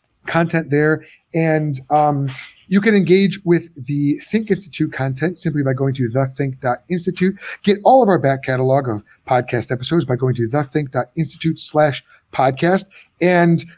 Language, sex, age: English, male, 30-49